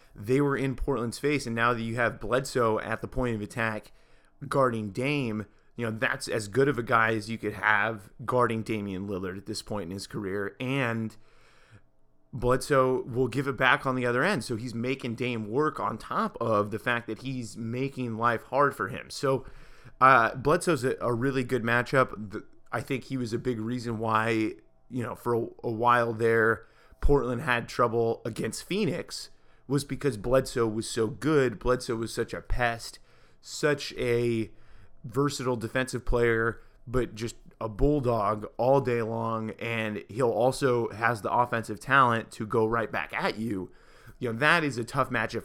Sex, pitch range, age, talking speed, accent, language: male, 110-125 Hz, 30-49, 180 wpm, American, English